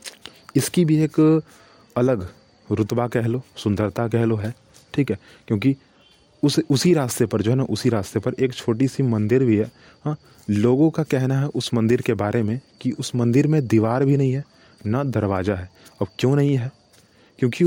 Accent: native